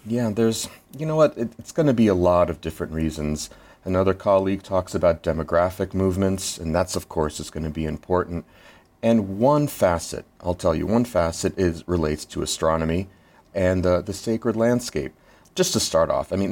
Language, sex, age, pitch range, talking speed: English, male, 40-59, 85-115 Hz, 195 wpm